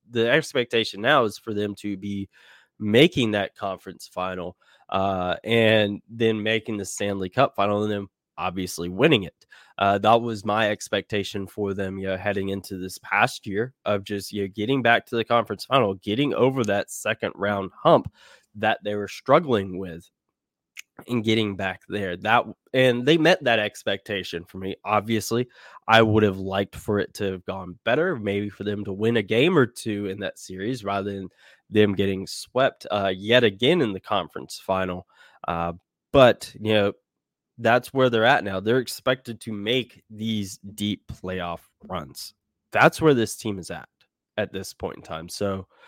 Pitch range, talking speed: 95-115 Hz, 175 wpm